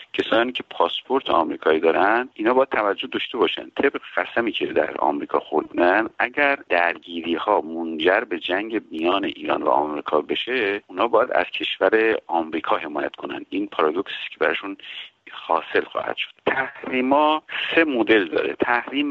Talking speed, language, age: 145 wpm, Persian, 50-69